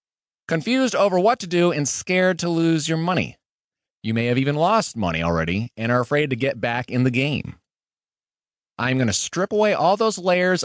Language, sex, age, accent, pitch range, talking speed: English, male, 30-49, American, 115-165 Hz, 195 wpm